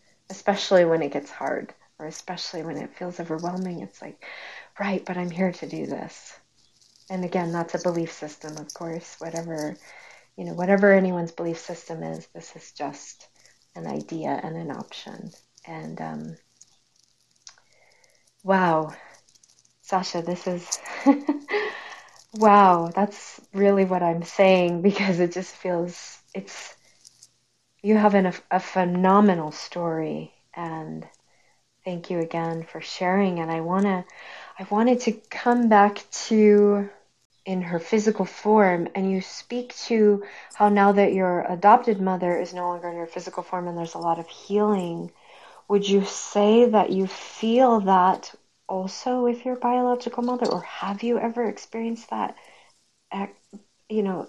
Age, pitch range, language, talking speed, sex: 30-49, 170-205 Hz, English, 145 wpm, female